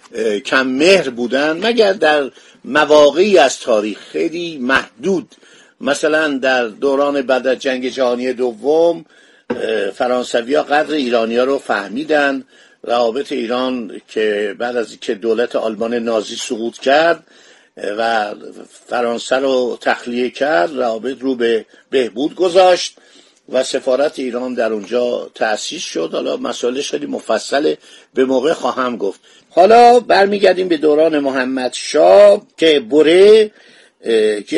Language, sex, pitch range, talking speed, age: Persian, male, 125-180 Hz, 115 wpm, 50-69